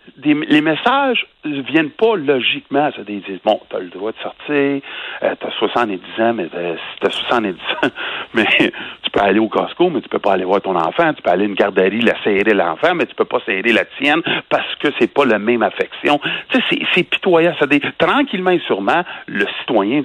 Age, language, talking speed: 60-79, French, 215 wpm